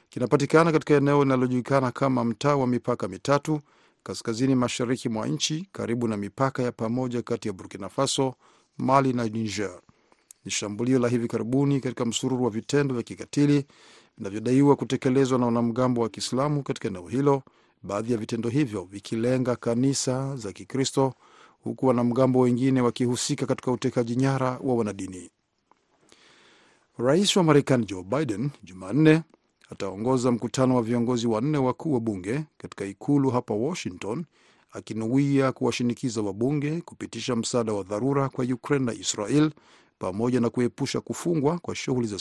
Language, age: Swahili, 50-69